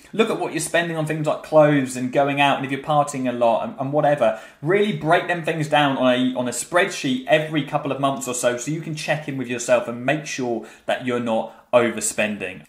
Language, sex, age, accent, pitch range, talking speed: English, male, 20-39, British, 125-165 Hz, 240 wpm